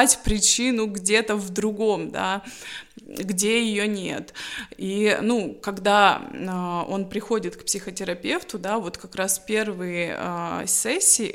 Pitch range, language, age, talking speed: 190-220 Hz, Russian, 20-39, 120 wpm